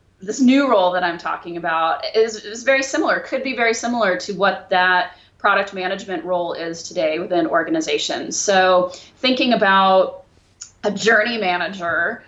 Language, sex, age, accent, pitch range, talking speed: English, female, 30-49, American, 180-225 Hz, 150 wpm